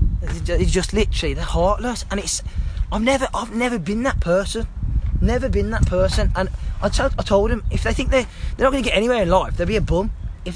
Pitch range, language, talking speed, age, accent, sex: 135-195 Hz, English, 210 wpm, 20-39, British, male